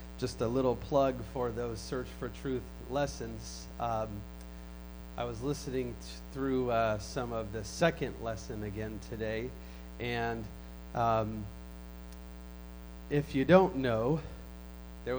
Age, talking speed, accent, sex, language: 30-49, 120 wpm, American, male, English